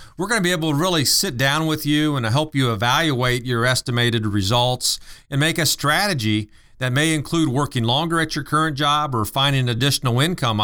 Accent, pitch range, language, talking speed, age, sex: American, 120-150 Hz, English, 195 wpm, 40-59, male